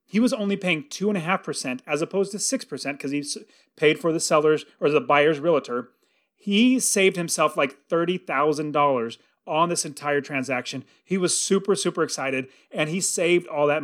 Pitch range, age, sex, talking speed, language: 150-210 Hz, 30-49, male, 195 wpm, English